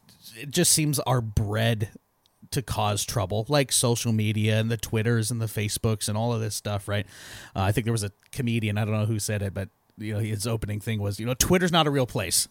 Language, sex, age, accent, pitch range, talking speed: English, male, 30-49, American, 110-150 Hz, 240 wpm